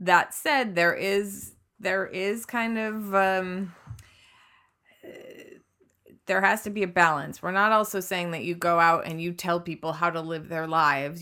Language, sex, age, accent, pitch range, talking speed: English, female, 20-39, American, 155-180 Hz, 170 wpm